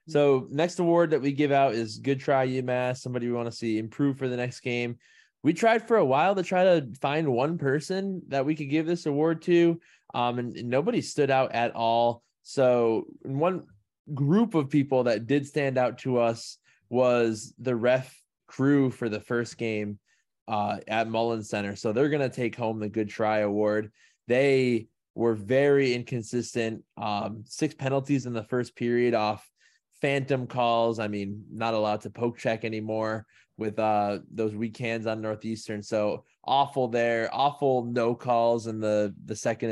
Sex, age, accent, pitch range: male, 20-39, American, 110-135 Hz